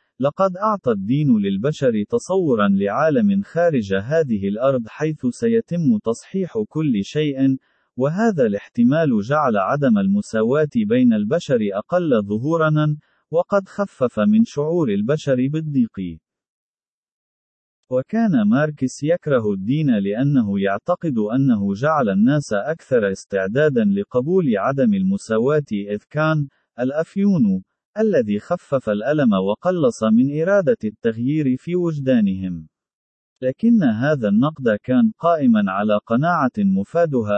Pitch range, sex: 125-205 Hz, male